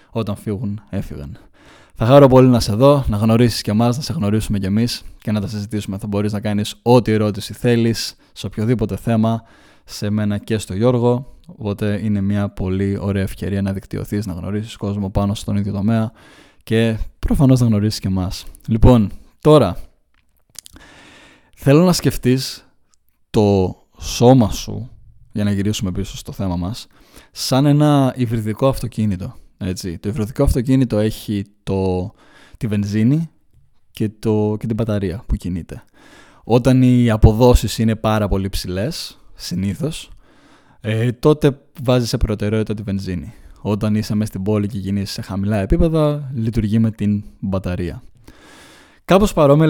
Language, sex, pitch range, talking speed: Greek, male, 100-120 Hz, 150 wpm